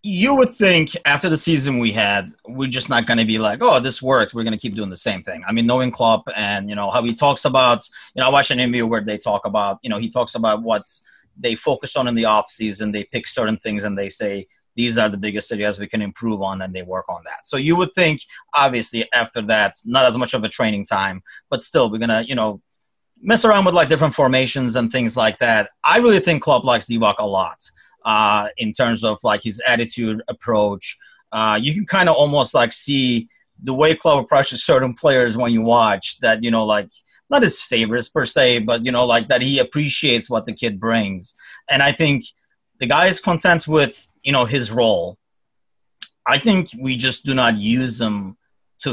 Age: 30-49